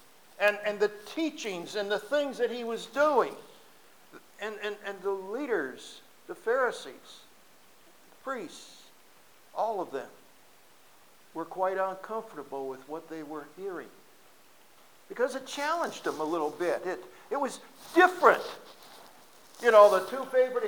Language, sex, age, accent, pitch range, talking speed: English, male, 60-79, American, 200-330 Hz, 135 wpm